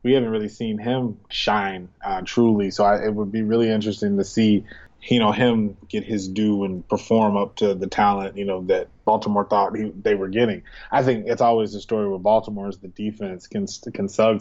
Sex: male